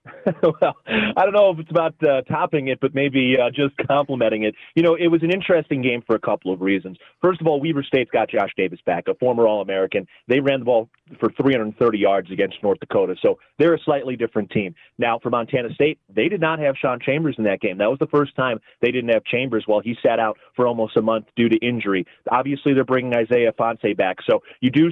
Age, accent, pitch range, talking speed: 30-49, American, 120-155 Hz, 235 wpm